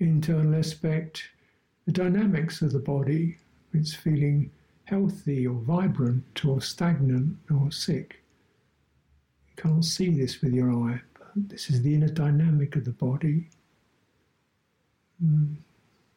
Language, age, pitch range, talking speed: English, 60-79, 140-165 Hz, 125 wpm